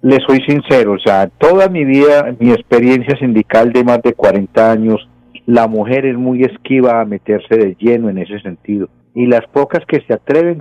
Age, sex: 50-69, male